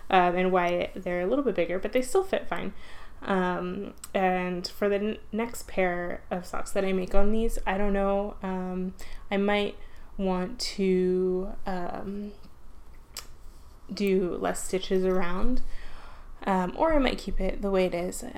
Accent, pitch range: American, 190-235 Hz